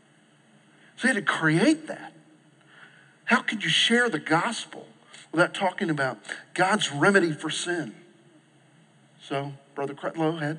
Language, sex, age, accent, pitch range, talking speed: English, male, 50-69, American, 150-215 Hz, 130 wpm